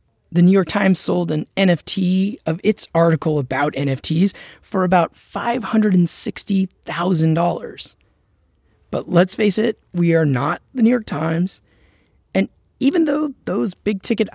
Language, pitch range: English, 165-225 Hz